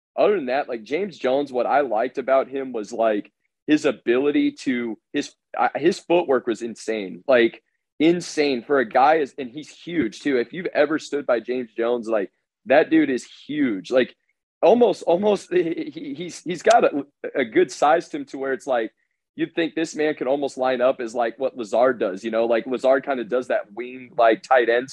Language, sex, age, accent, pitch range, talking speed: English, male, 30-49, American, 115-145 Hz, 205 wpm